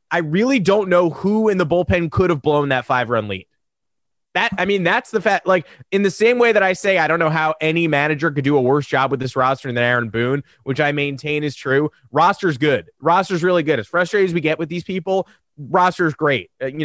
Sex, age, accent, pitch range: male, 20-39, American, 135-185 Hz